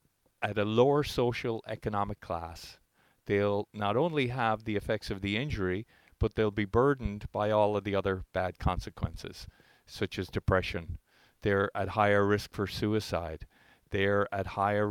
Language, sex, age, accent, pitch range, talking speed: English, male, 50-69, American, 95-110 Hz, 155 wpm